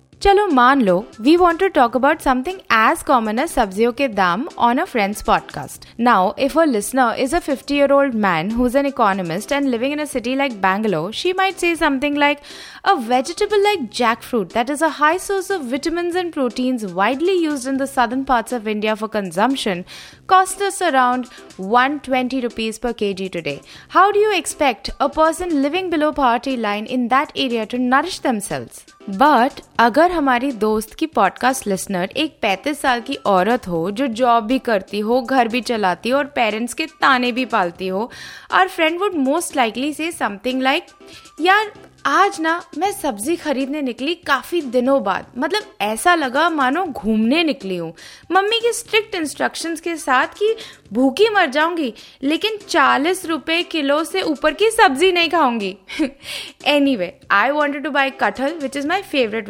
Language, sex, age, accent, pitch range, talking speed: Hindi, female, 20-39, native, 235-330 Hz, 155 wpm